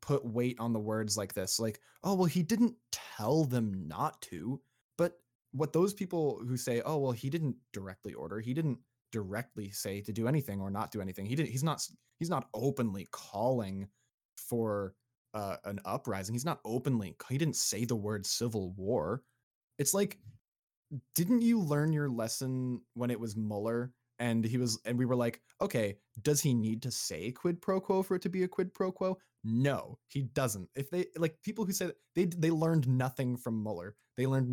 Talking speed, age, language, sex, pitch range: 195 wpm, 20-39, English, male, 110-140 Hz